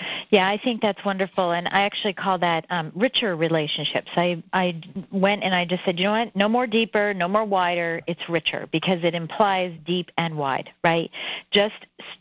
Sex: female